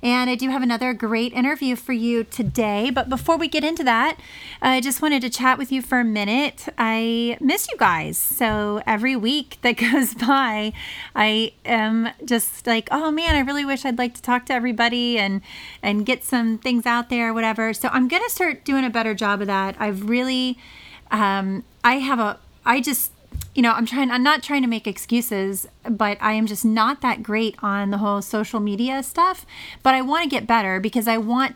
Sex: female